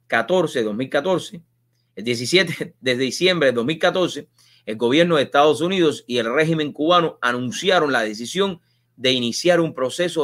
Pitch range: 120-165 Hz